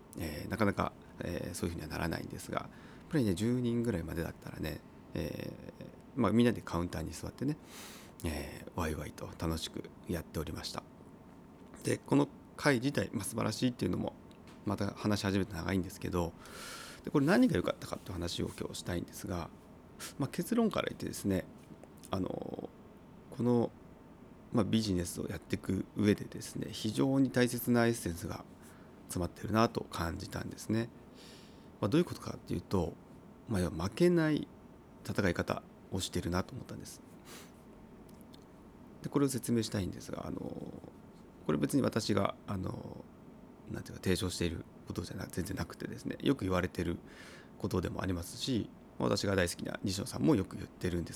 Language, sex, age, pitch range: Japanese, male, 30-49, 90-120 Hz